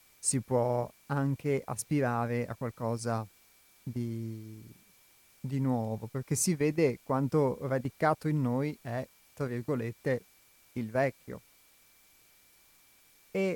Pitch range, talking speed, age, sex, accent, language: 120-140 Hz, 95 wpm, 30-49, male, native, Italian